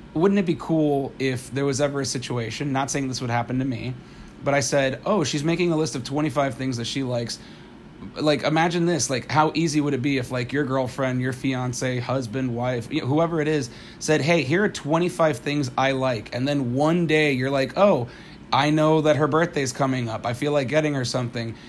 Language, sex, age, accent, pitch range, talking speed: English, male, 30-49, American, 125-150 Hz, 220 wpm